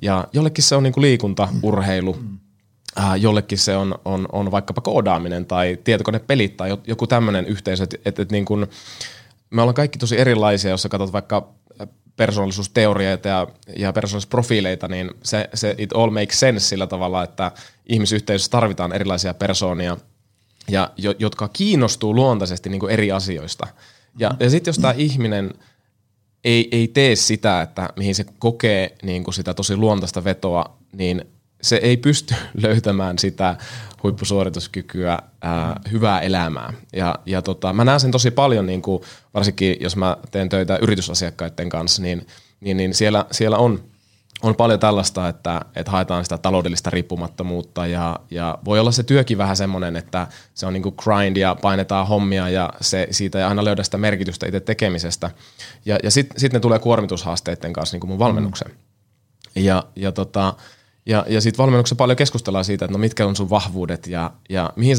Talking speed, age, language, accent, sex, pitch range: 160 wpm, 20-39, Finnish, native, male, 95-110 Hz